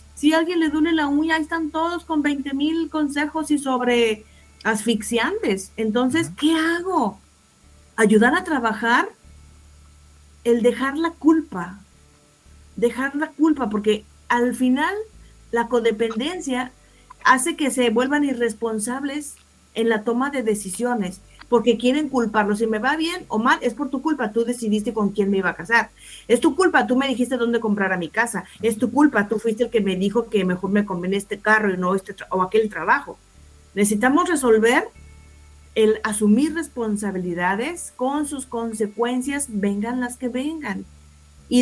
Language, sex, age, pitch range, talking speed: Spanish, female, 40-59, 200-275 Hz, 160 wpm